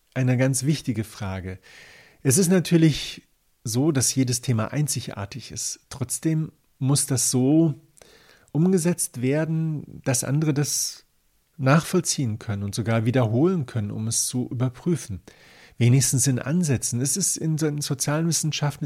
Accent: German